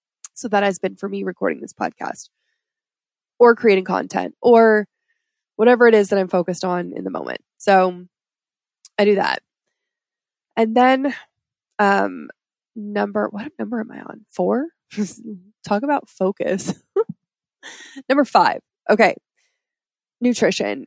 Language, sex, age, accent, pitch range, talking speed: English, female, 20-39, American, 185-265 Hz, 125 wpm